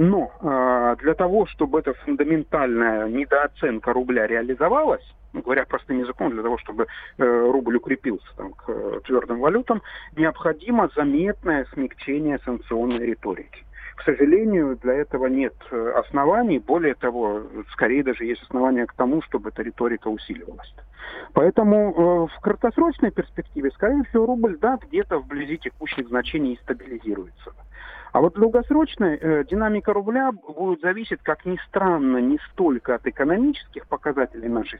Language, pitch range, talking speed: Russian, 125-205 Hz, 125 wpm